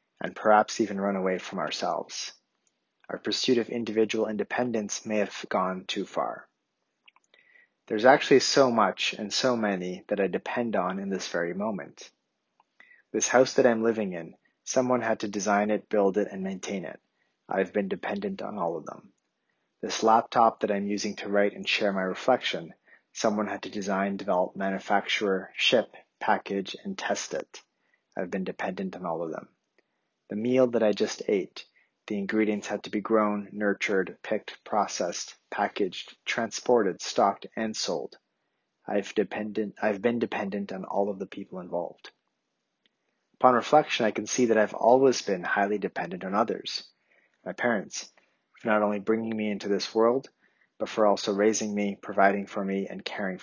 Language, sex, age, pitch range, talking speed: English, male, 30-49, 100-115 Hz, 165 wpm